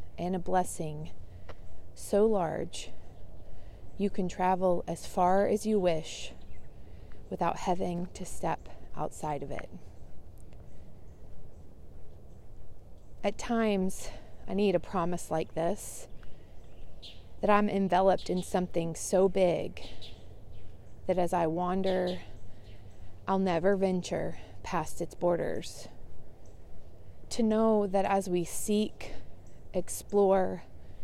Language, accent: English, American